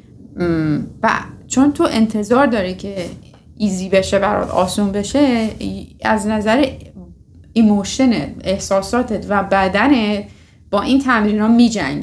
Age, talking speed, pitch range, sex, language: 30-49, 100 wpm, 195-240 Hz, female, Persian